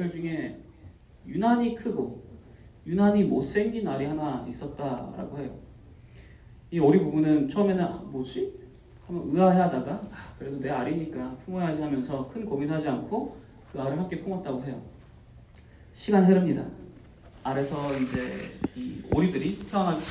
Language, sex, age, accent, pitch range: Korean, male, 30-49, native, 130-185 Hz